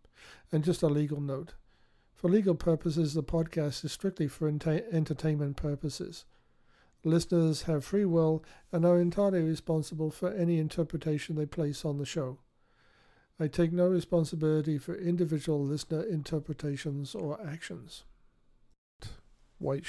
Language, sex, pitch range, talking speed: English, male, 135-160 Hz, 130 wpm